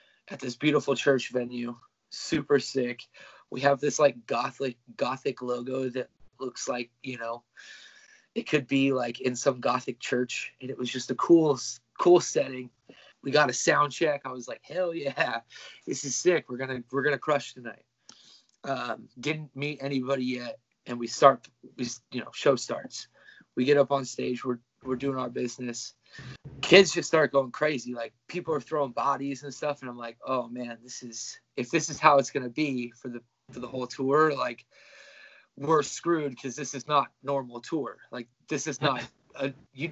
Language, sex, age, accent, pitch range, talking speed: English, male, 20-39, American, 125-145 Hz, 185 wpm